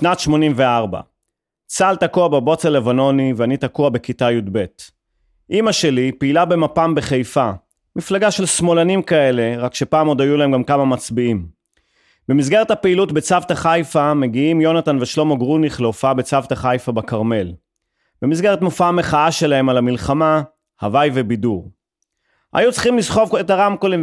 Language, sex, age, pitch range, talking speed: Hebrew, male, 30-49, 130-170 Hz, 130 wpm